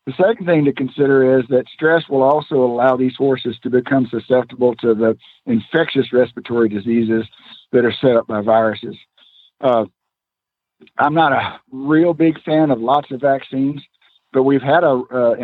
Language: English